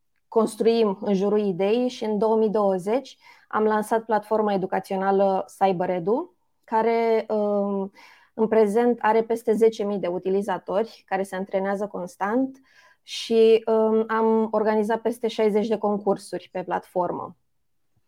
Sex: female